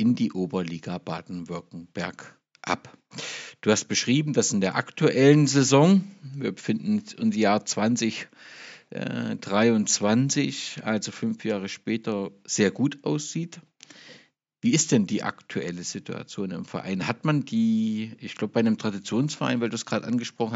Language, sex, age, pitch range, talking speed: German, male, 50-69, 115-155 Hz, 135 wpm